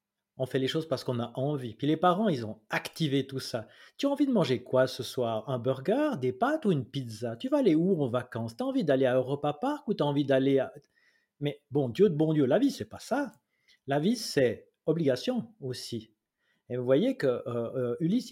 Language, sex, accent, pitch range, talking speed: French, male, French, 130-160 Hz, 235 wpm